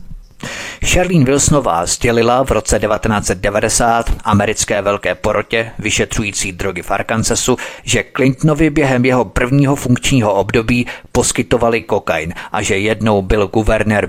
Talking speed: 115 wpm